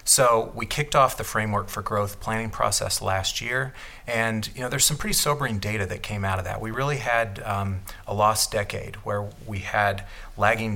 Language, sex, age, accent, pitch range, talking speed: English, male, 40-59, American, 100-115 Hz, 200 wpm